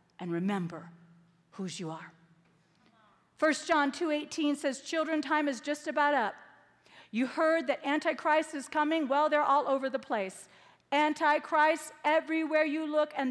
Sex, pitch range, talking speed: female, 255-330 Hz, 145 wpm